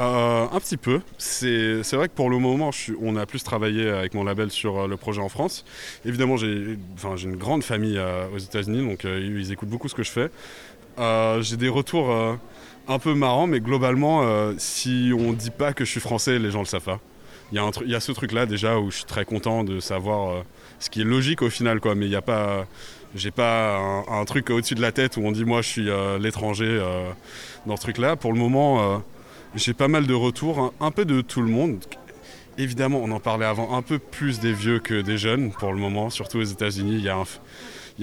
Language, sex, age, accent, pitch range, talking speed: French, male, 20-39, French, 100-125 Hz, 250 wpm